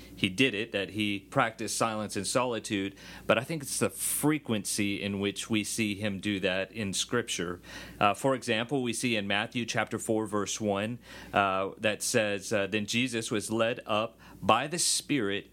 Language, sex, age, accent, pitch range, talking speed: English, male, 40-59, American, 105-130 Hz, 180 wpm